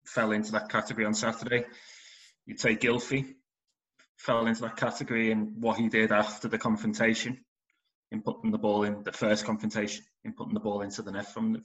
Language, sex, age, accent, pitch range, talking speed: English, male, 20-39, British, 105-125 Hz, 190 wpm